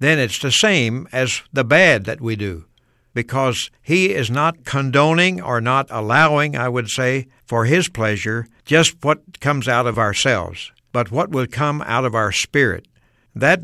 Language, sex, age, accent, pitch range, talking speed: English, male, 60-79, American, 115-150 Hz, 170 wpm